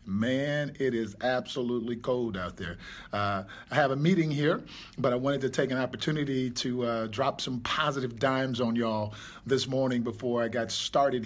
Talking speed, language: 180 wpm, English